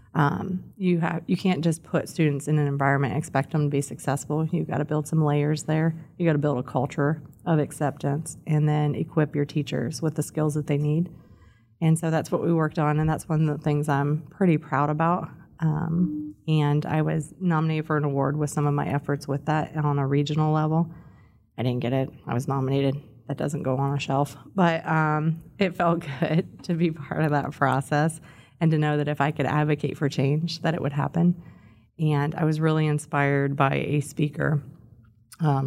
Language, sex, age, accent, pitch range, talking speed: English, female, 30-49, American, 145-160 Hz, 215 wpm